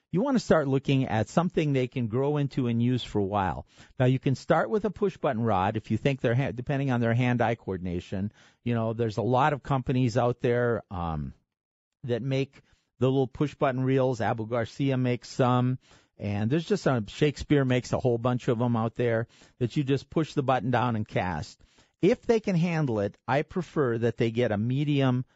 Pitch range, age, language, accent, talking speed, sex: 115-145 Hz, 50-69, English, American, 215 wpm, male